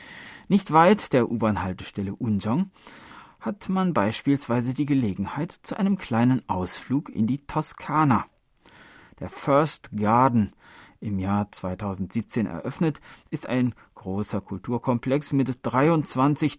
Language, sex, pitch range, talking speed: German, male, 105-140 Hz, 110 wpm